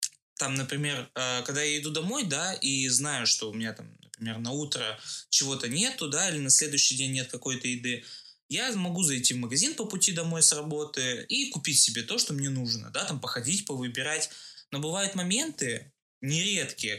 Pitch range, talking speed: 125-165 Hz, 180 wpm